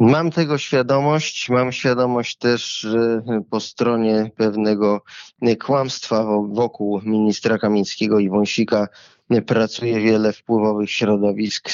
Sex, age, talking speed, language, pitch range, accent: male, 20-39, 95 wpm, Polish, 105-115 Hz, native